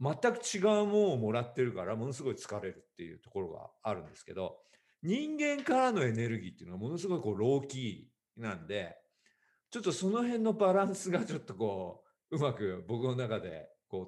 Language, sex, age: Japanese, male, 50-69